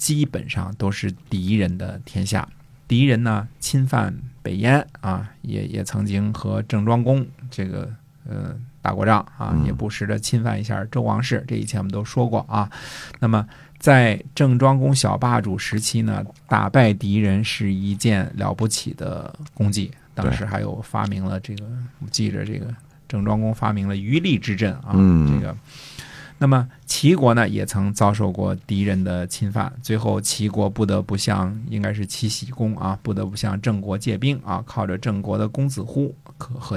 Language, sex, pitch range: Chinese, male, 100-130 Hz